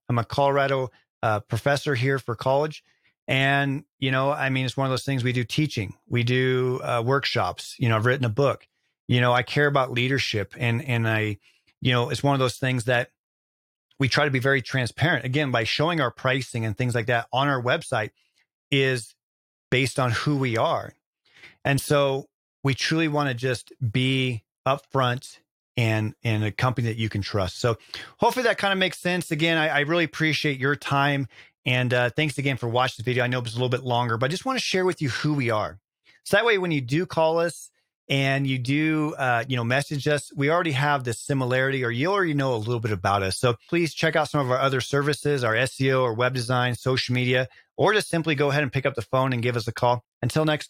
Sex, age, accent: male, 40-59, American